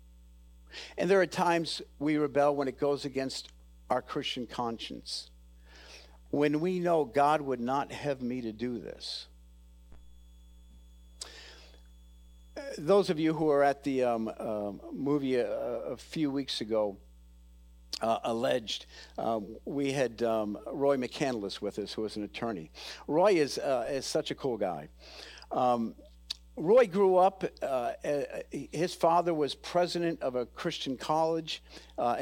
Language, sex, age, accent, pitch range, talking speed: English, male, 50-69, American, 95-155 Hz, 140 wpm